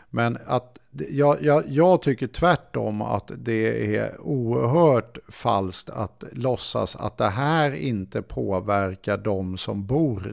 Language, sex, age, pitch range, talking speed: Swedish, male, 50-69, 105-135 Hz, 130 wpm